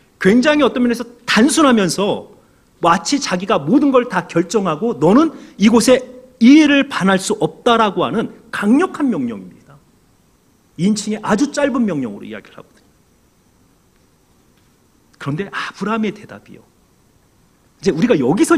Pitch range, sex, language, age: 180-270 Hz, male, Korean, 40-59